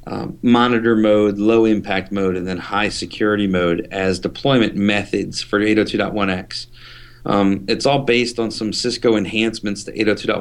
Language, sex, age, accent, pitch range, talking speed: English, male, 40-59, American, 100-120 Hz, 140 wpm